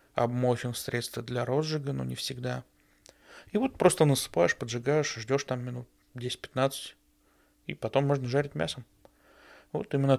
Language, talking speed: Russian, 135 wpm